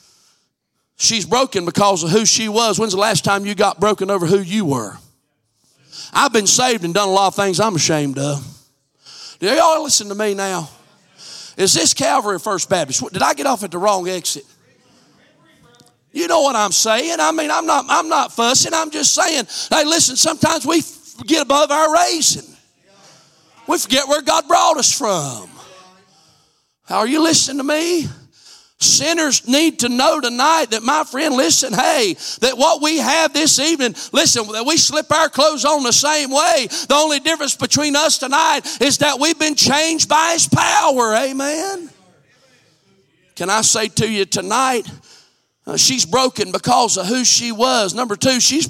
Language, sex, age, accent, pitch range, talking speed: English, male, 40-59, American, 195-300 Hz, 175 wpm